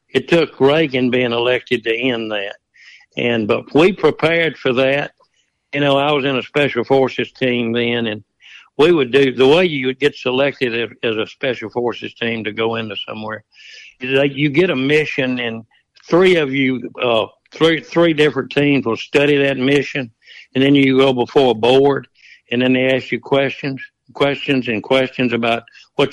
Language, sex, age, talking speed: English, male, 60-79, 185 wpm